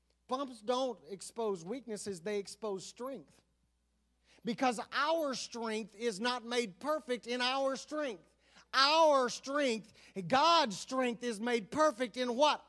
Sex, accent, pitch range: male, American, 170-250 Hz